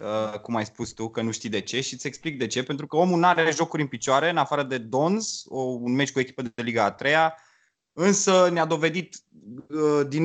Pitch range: 120-155 Hz